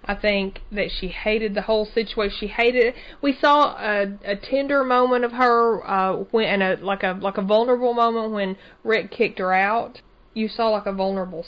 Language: English